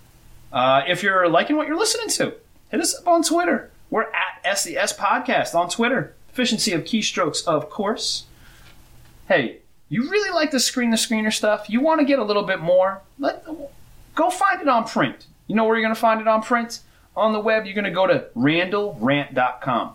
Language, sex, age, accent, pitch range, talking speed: English, male, 30-49, American, 135-225 Hz, 190 wpm